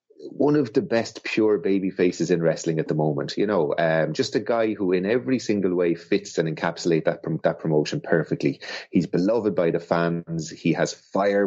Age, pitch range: 30-49, 85-105 Hz